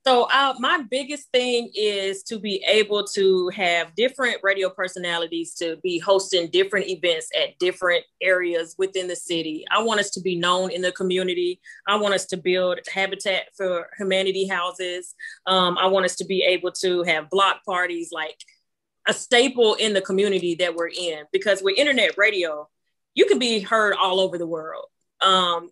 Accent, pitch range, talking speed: American, 175-210 Hz, 175 wpm